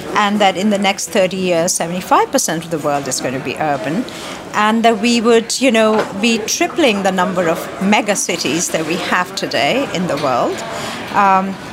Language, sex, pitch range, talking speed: English, female, 170-220 Hz, 185 wpm